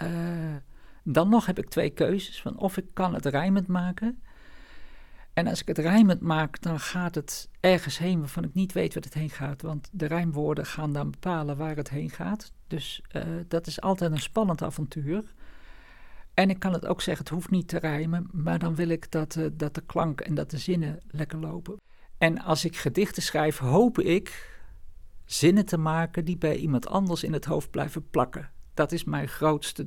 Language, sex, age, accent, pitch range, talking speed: Dutch, male, 50-69, Dutch, 150-180 Hz, 200 wpm